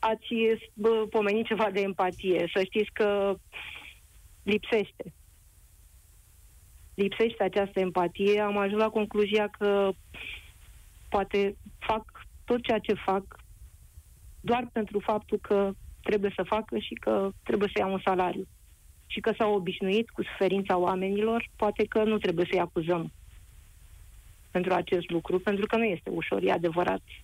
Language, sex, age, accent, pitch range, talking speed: Romanian, female, 30-49, native, 175-220 Hz, 130 wpm